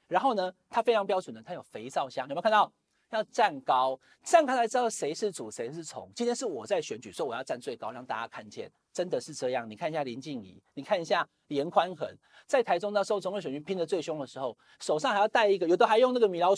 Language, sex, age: Chinese, male, 40-59